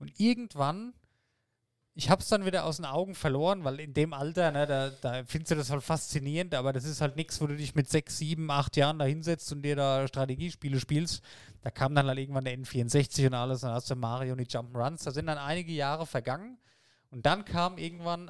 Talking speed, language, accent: 230 wpm, German, German